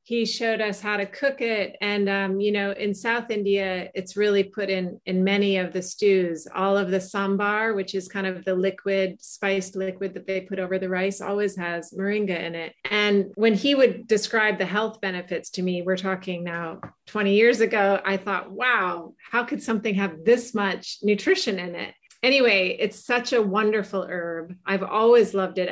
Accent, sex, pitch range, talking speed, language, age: American, female, 185-210 Hz, 195 wpm, English, 30-49